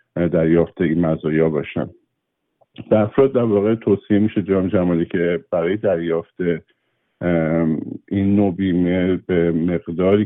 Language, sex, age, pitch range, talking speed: Persian, male, 50-69, 85-90 Hz, 115 wpm